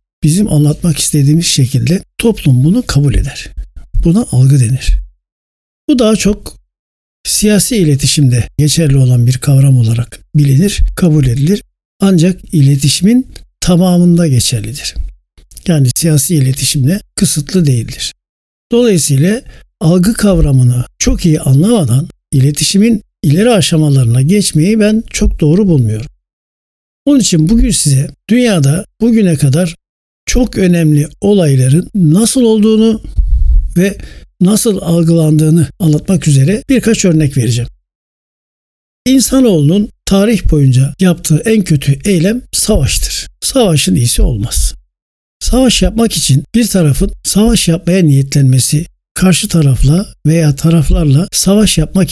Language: Turkish